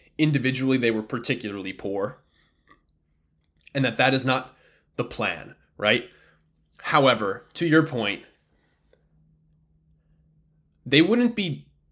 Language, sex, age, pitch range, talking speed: English, male, 20-39, 110-150 Hz, 100 wpm